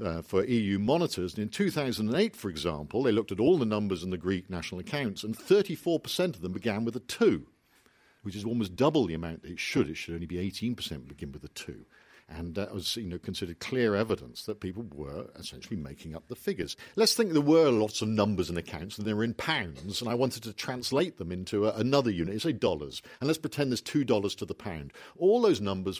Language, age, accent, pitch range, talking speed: English, 50-69, British, 100-155 Hz, 235 wpm